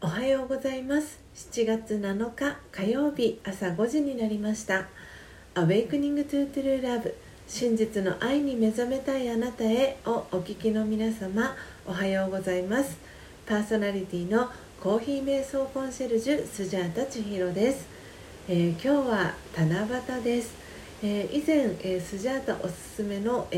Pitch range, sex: 190-250 Hz, female